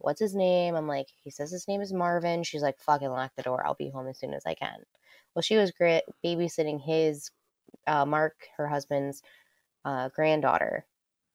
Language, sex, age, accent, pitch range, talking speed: English, female, 20-39, American, 145-175 Hz, 190 wpm